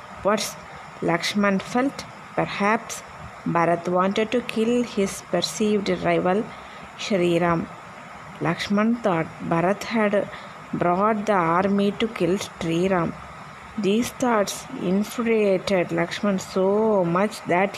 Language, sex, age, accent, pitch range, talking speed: Tamil, female, 20-39, native, 175-210 Hz, 105 wpm